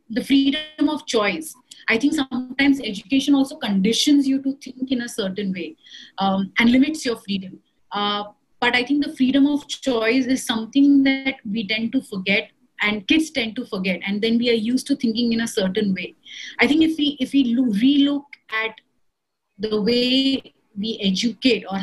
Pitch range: 210-265 Hz